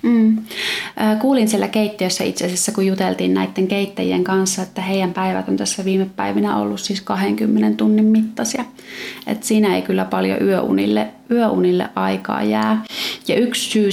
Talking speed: 150 wpm